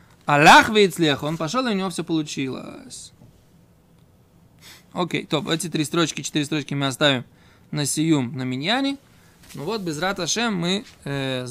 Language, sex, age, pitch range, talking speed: Russian, male, 20-39, 140-190 Hz, 140 wpm